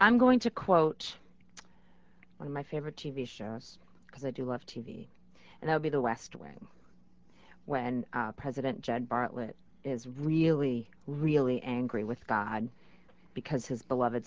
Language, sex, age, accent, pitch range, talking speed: English, female, 40-59, American, 125-180 Hz, 150 wpm